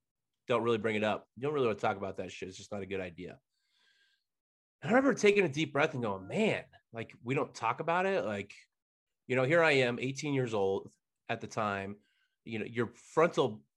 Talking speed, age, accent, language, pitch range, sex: 225 wpm, 30-49, American, English, 105-130 Hz, male